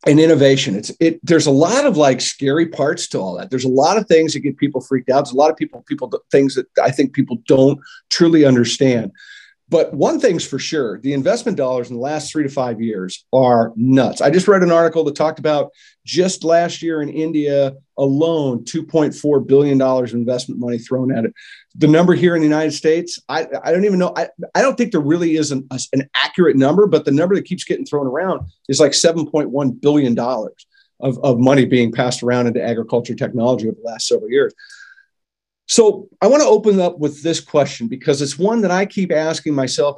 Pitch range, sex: 130-170 Hz, male